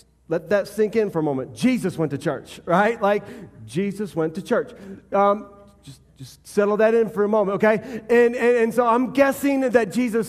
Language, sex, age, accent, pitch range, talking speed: English, male, 30-49, American, 165-230 Hz, 200 wpm